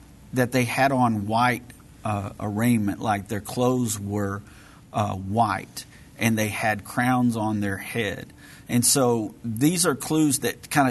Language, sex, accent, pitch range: English, male, American, 110-130 Hz